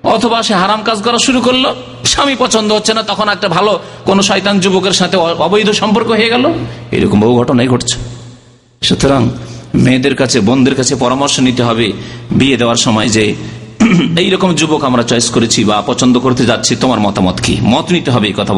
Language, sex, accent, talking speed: Bengali, male, native, 40 wpm